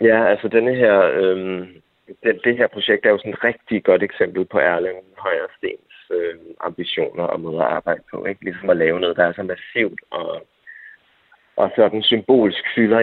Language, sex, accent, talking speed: Danish, male, native, 190 wpm